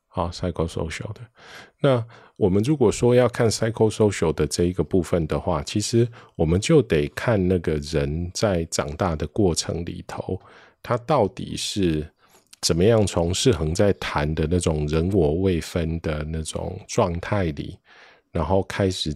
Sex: male